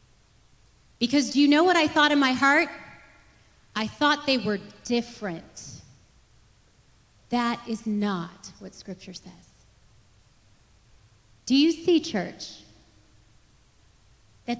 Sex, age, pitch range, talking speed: female, 30-49, 210-320 Hz, 105 wpm